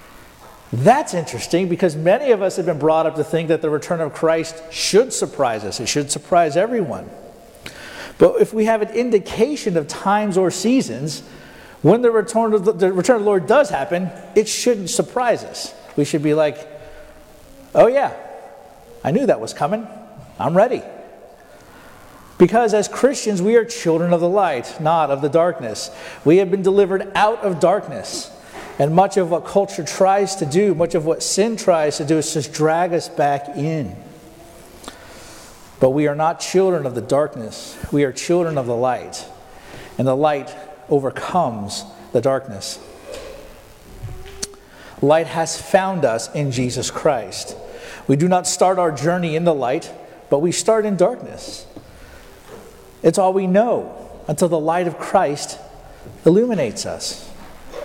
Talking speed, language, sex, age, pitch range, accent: 160 wpm, English, male, 50-69, 155-200 Hz, American